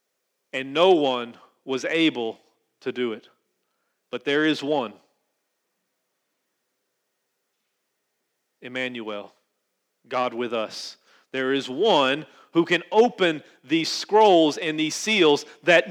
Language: English